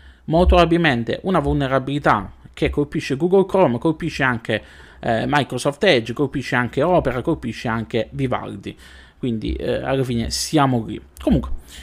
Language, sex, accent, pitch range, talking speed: Italian, male, native, 115-170 Hz, 130 wpm